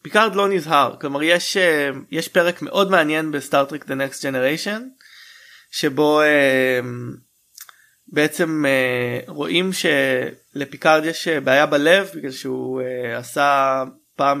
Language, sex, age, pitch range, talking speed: Hebrew, male, 20-39, 135-175 Hz, 105 wpm